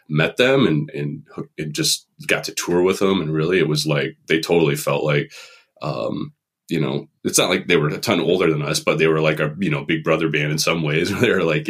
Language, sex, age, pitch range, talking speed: English, male, 30-49, 75-80 Hz, 255 wpm